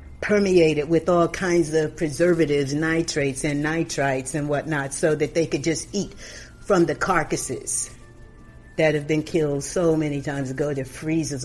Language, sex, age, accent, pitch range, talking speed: English, female, 50-69, American, 140-220 Hz, 155 wpm